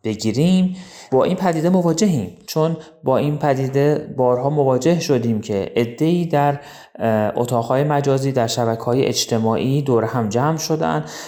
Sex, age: male, 30-49